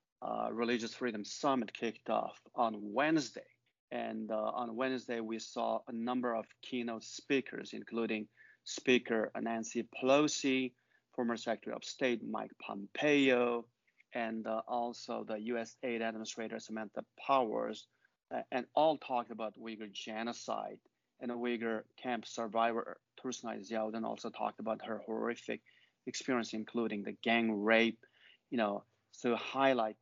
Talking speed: 130 wpm